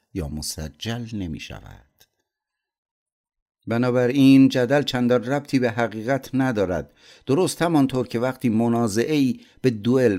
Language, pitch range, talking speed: Persian, 90-125 Hz, 105 wpm